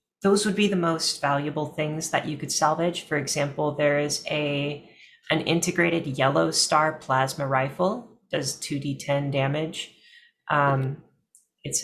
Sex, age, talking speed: female, 30-49, 135 wpm